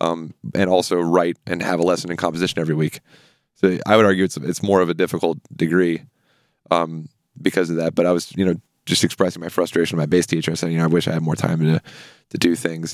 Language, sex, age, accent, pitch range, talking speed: English, male, 20-39, American, 85-95 Hz, 250 wpm